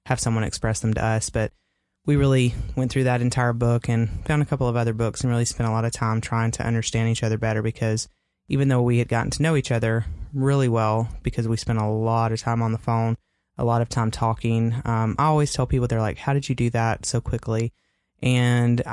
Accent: American